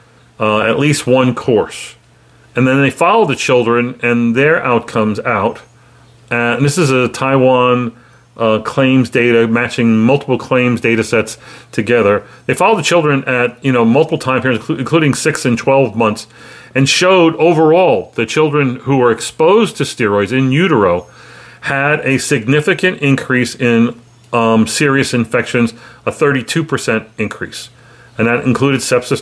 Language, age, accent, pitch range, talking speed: English, 40-59, American, 115-140 Hz, 150 wpm